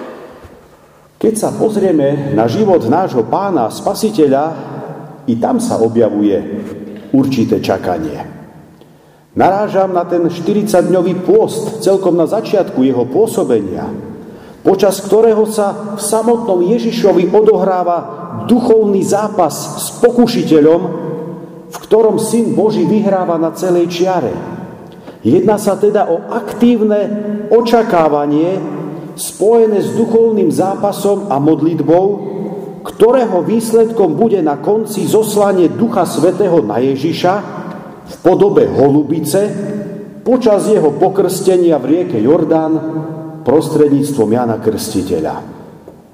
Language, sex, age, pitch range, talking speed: Slovak, male, 50-69, 160-210 Hz, 100 wpm